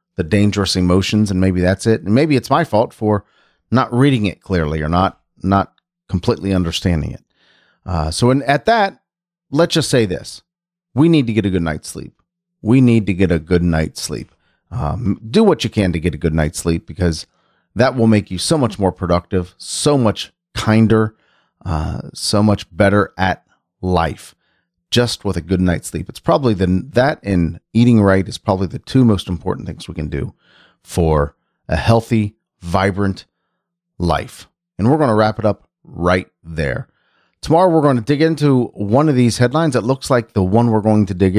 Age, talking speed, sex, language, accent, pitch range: 40-59, 190 wpm, male, English, American, 90-120 Hz